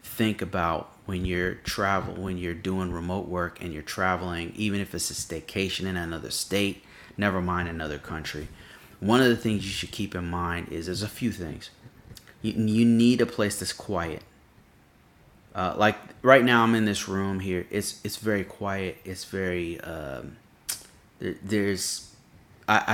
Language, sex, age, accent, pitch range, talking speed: English, male, 30-49, American, 85-105 Hz, 170 wpm